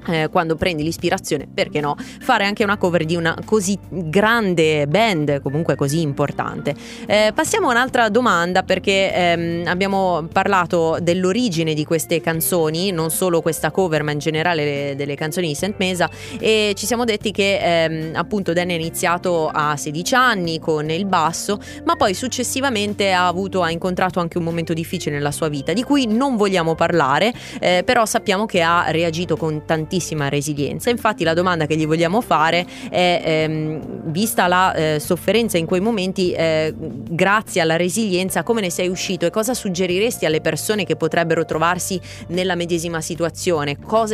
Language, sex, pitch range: Italian, female, 160-195 Hz